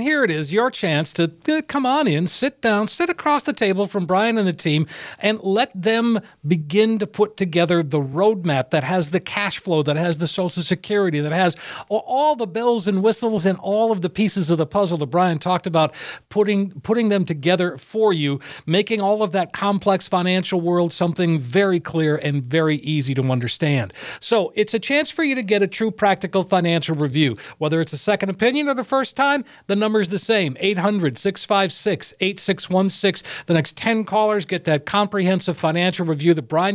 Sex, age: male, 50-69